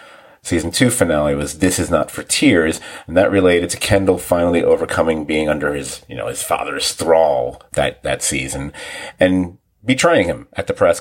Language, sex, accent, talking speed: English, male, American, 180 wpm